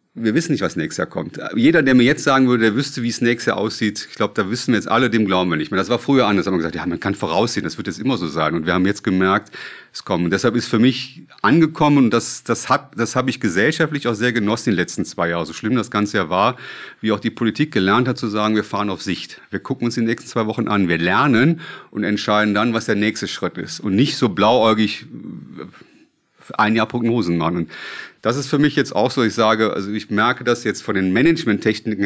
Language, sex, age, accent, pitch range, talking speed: German, male, 30-49, German, 100-125 Hz, 260 wpm